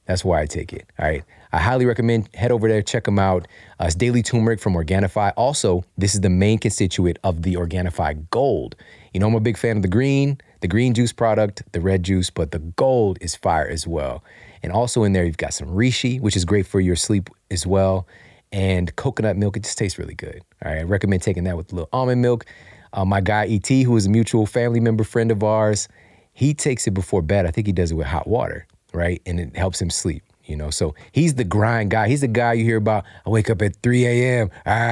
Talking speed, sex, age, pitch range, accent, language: 245 wpm, male, 30-49, 90-115 Hz, American, English